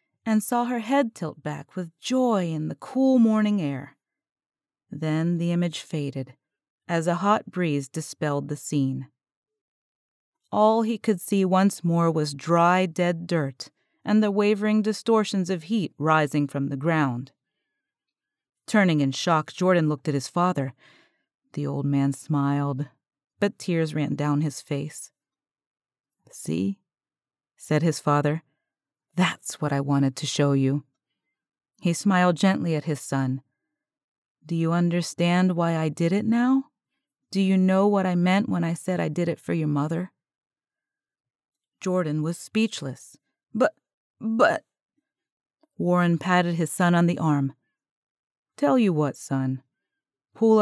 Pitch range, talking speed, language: 145-195 Hz, 140 wpm, English